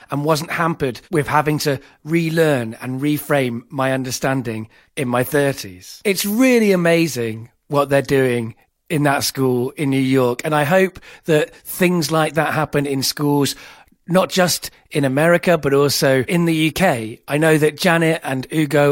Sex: male